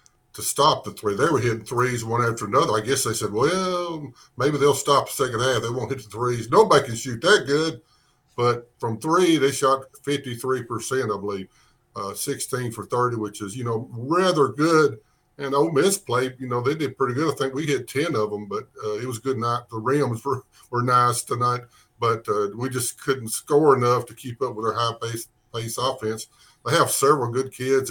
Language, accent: English, American